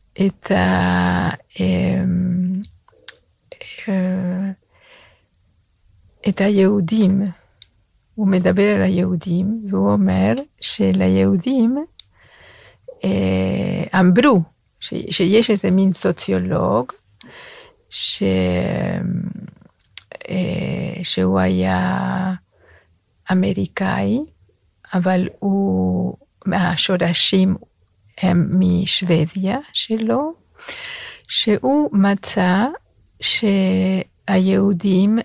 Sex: female